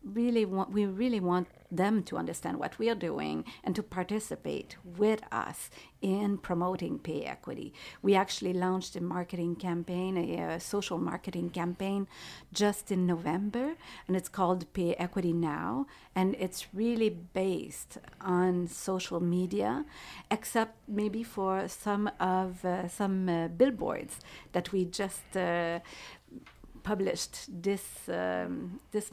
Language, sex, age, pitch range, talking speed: English, female, 50-69, 175-205 Hz, 130 wpm